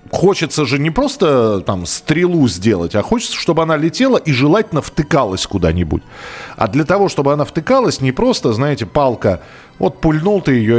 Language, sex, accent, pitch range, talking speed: Russian, male, native, 110-165 Hz, 165 wpm